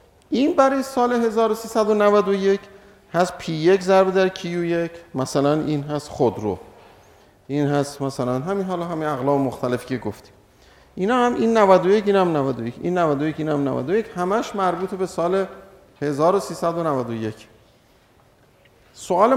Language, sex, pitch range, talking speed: Persian, male, 140-200 Hz, 140 wpm